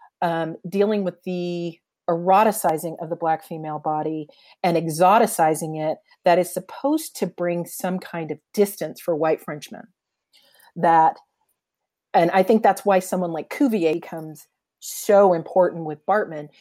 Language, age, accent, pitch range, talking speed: English, 40-59, American, 170-225 Hz, 140 wpm